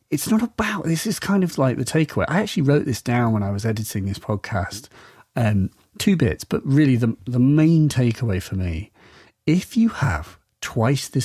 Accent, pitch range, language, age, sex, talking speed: British, 105-135 Hz, English, 40-59, male, 195 wpm